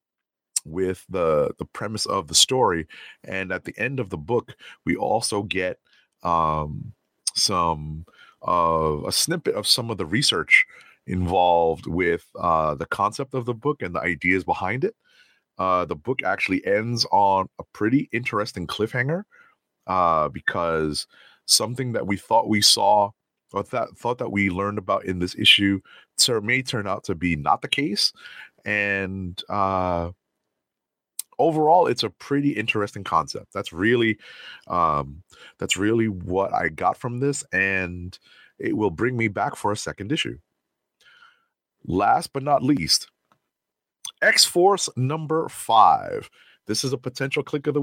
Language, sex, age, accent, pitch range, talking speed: English, male, 30-49, American, 90-125 Hz, 150 wpm